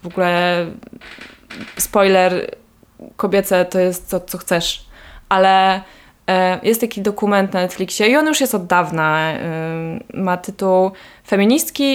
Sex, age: female, 20-39